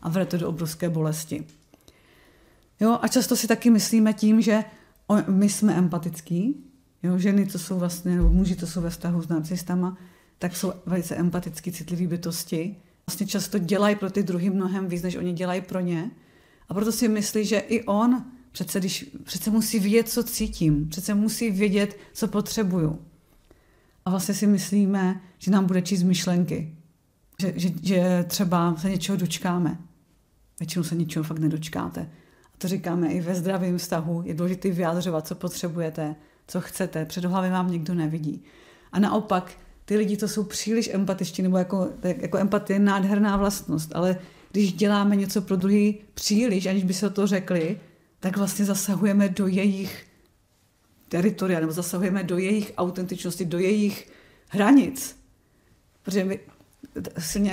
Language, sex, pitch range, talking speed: Czech, female, 175-205 Hz, 160 wpm